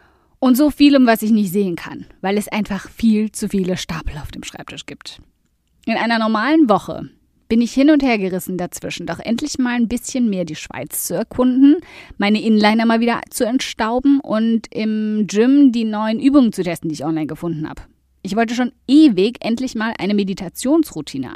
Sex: female